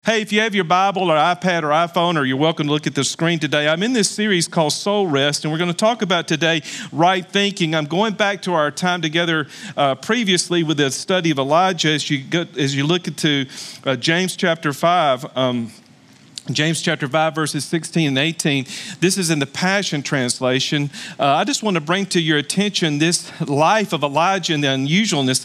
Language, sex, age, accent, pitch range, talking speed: English, male, 40-59, American, 145-180 Hz, 205 wpm